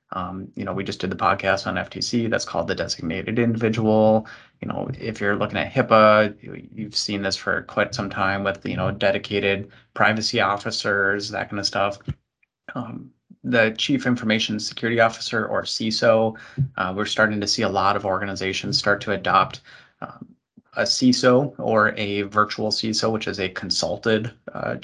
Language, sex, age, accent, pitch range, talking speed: English, male, 20-39, American, 100-115 Hz, 170 wpm